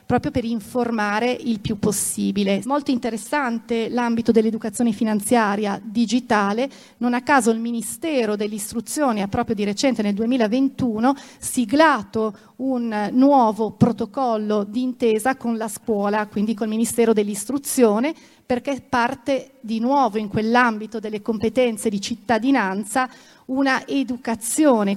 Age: 40-59